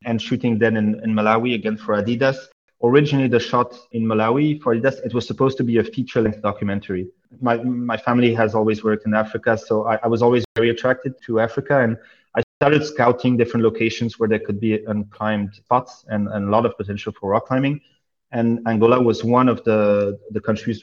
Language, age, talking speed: English, 30-49, 200 wpm